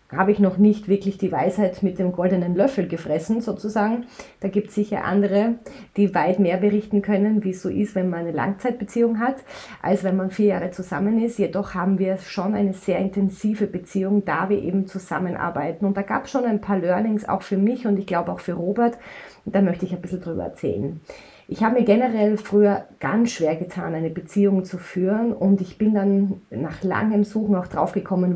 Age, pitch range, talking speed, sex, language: 30-49, 180-210 Hz, 205 wpm, female, German